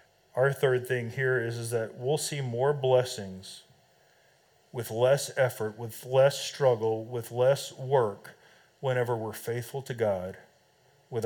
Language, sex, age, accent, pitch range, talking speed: English, male, 40-59, American, 115-140 Hz, 140 wpm